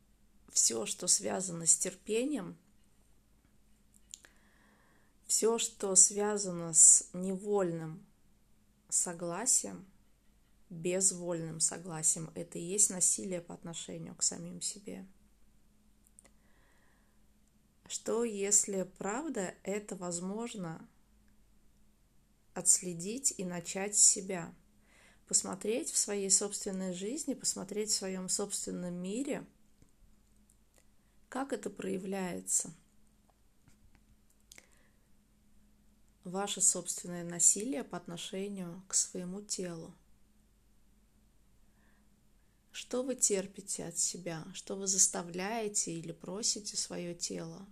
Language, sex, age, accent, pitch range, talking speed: Russian, female, 20-39, native, 175-205 Hz, 80 wpm